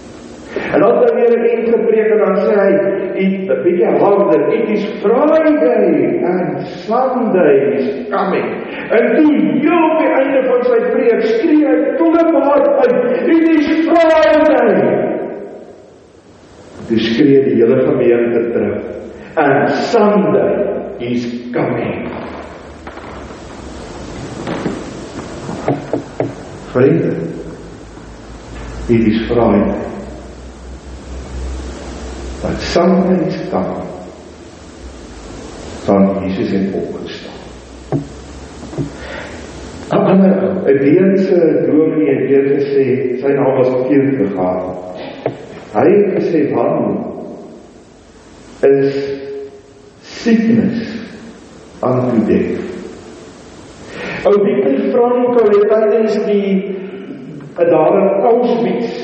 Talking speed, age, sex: 80 wpm, 50-69, male